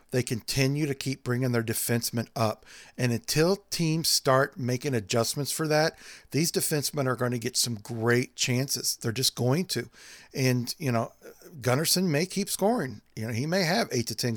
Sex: male